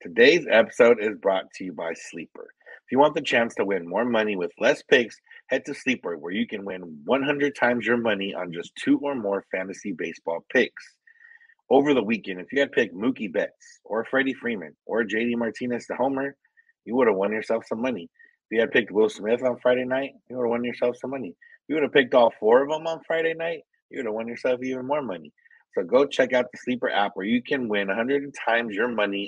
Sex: male